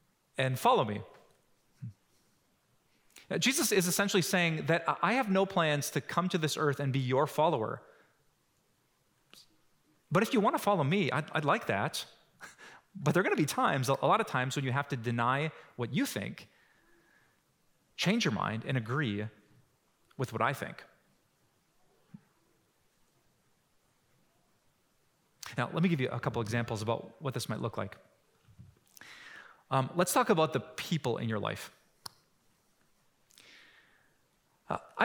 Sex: male